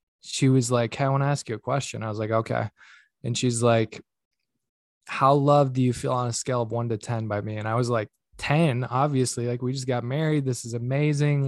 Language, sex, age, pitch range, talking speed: English, male, 20-39, 120-145 Hz, 235 wpm